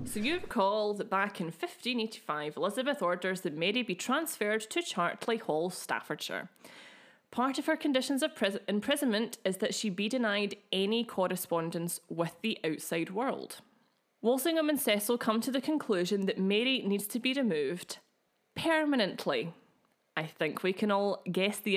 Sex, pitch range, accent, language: female, 185-245 Hz, British, English